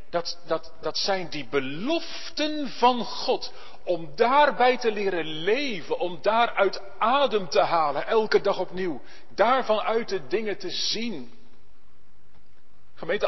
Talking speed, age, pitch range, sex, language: 130 wpm, 40-59, 190-245 Hz, male, Dutch